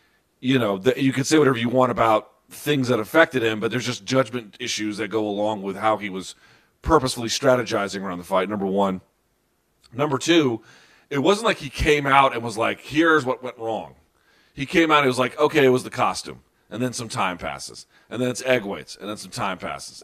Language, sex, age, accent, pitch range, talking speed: English, male, 40-59, American, 105-135 Hz, 220 wpm